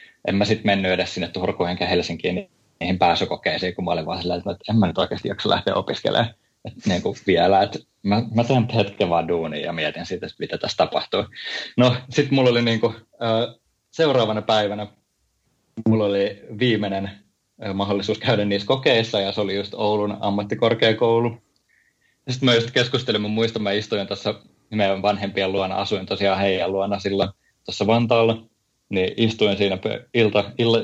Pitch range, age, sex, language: 100-120 Hz, 20-39, male, Finnish